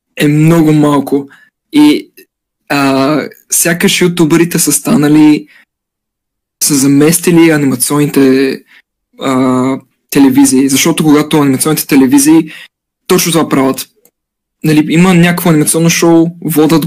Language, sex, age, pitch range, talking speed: Bulgarian, male, 20-39, 140-175 Hz, 95 wpm